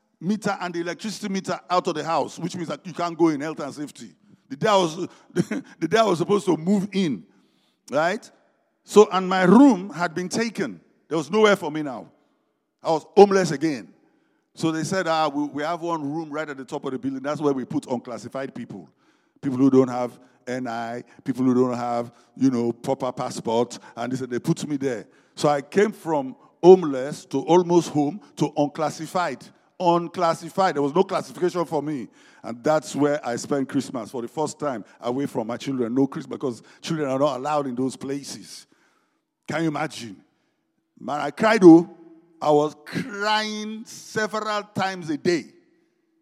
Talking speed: 185 wpm